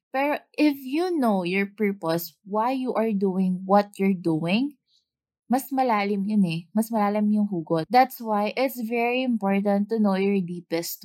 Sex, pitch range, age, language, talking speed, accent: female, 195-245 Hz, 20-39, English, 165 wpm, Filipino